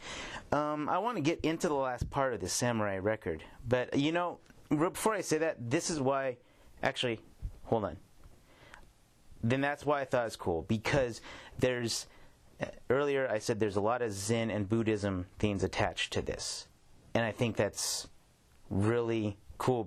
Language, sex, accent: English, male, American